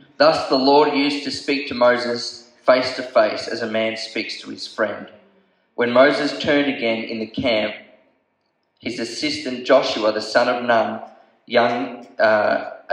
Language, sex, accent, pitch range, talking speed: English, male, Australian, 110-135 Hz, 160 wpm